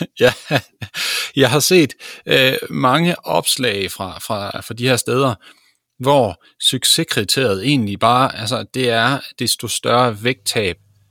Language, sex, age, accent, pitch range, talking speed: Danish, male, 30-49, native, 105-135 Hz, 110 wpm